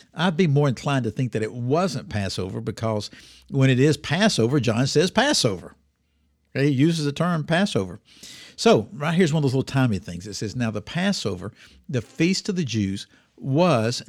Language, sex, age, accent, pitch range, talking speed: English, male, 60-79, American, 105-145 Hz, 185 wpm